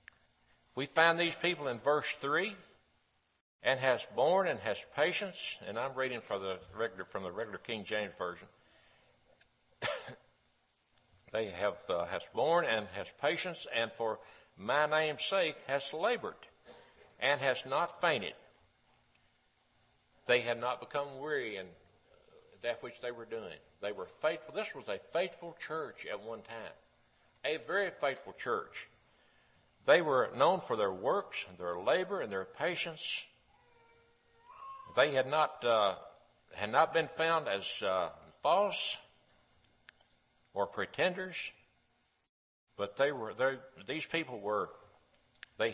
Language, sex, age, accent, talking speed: English, male, 60-79, American, 130 wpm